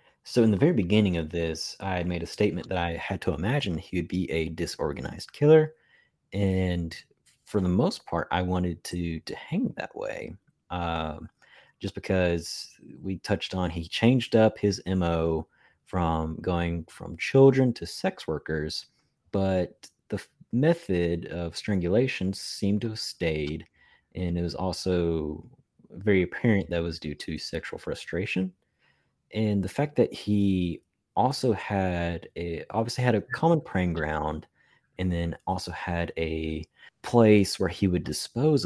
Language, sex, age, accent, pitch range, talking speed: English, male, 30-49, American, 80-100 Hz, 150 wpm